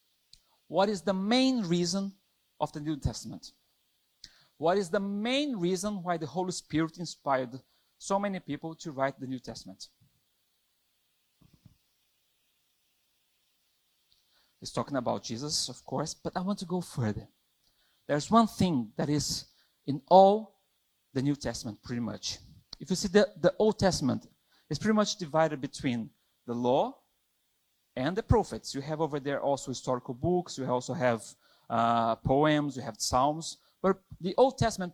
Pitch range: 135-205 Hz